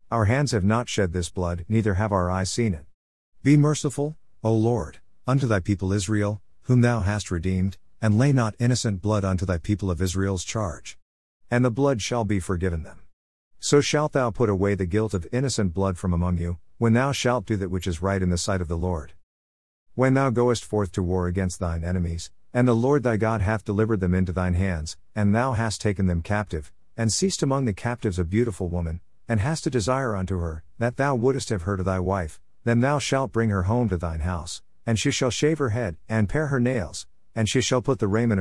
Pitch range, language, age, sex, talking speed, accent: 90-120 Hz, English, 50-69, male, 225 wpm, American